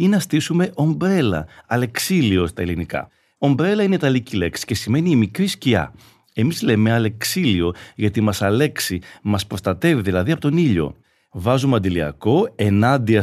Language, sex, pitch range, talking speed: Greek, male, 100-150 Hz, 170 wpm